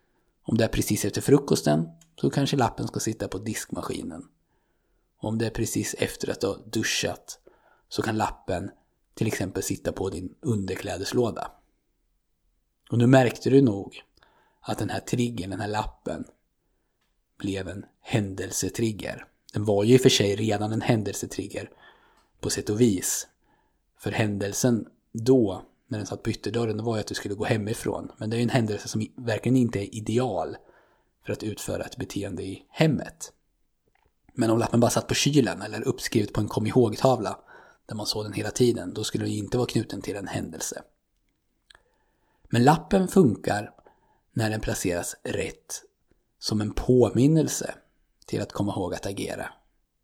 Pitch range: 105-125 Hz